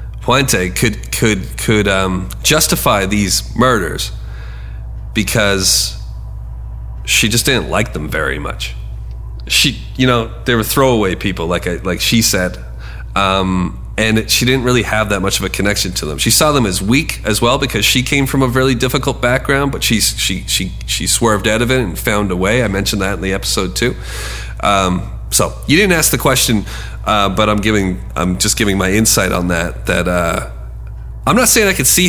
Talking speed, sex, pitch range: 195 wpm, male, 90-120 Hz